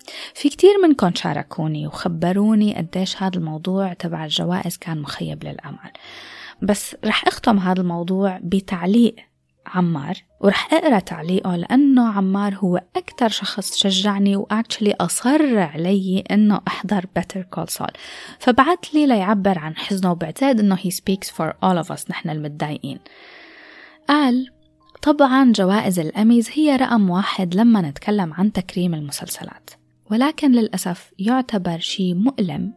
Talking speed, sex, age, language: 125 wpm, female, 20-39, Arabic